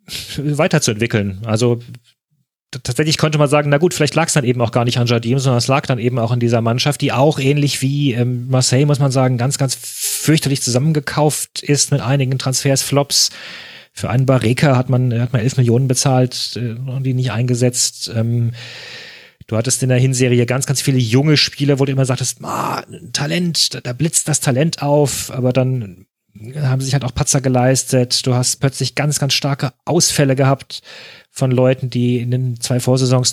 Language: German